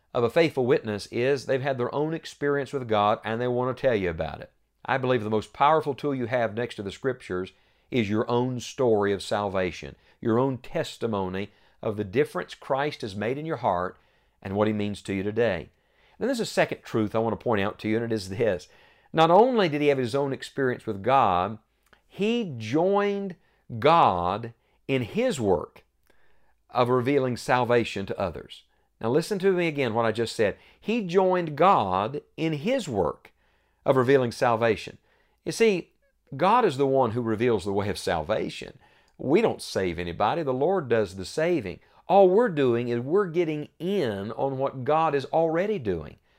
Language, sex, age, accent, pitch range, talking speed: English, male, 50-69, American, 110-155 Hz, 190 wpm